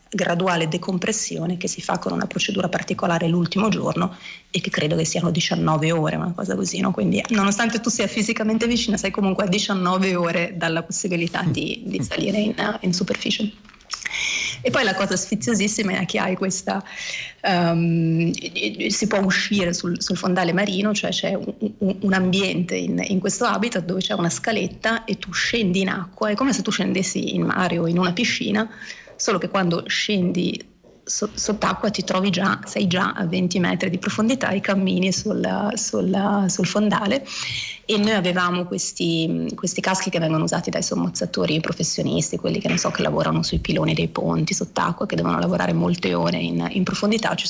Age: 30-49